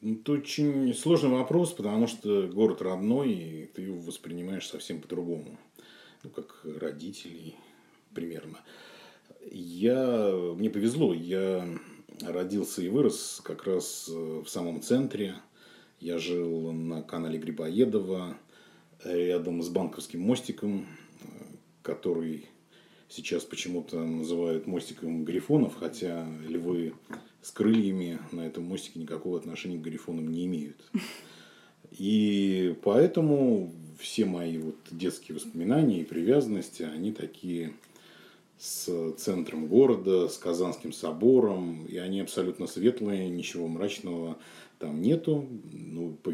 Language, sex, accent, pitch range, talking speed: Russian, male, native, 80-100 Hz, 105 wpm